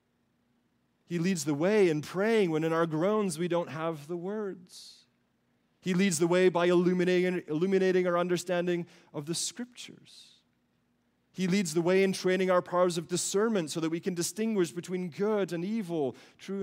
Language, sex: English, male